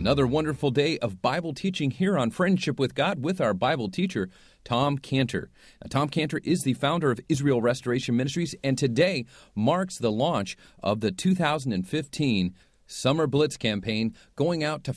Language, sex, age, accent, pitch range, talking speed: English, male, 40-59, American, 115-150 Hz, 160 wpm